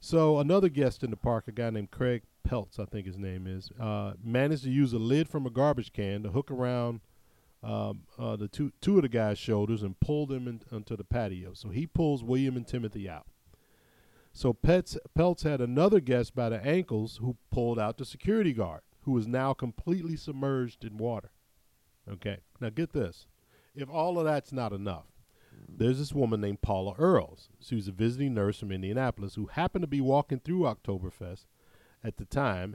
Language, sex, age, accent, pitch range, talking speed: English, male, 50-69, American, 105-140 Hz, 195 wpm